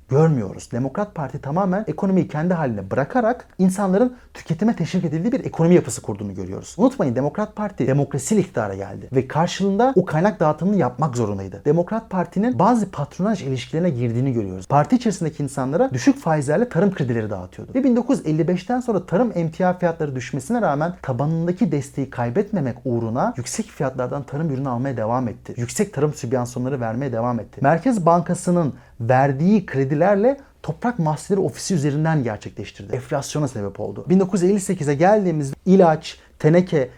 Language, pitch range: Turkish, 130-195 Hz